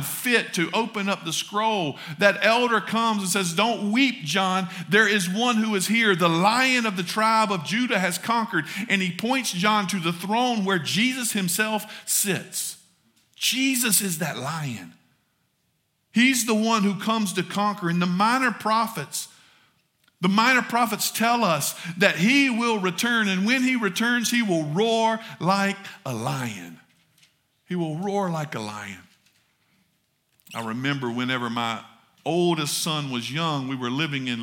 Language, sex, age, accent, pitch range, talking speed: English, male, 50-69, American, 155-210 Hz, 160 wpm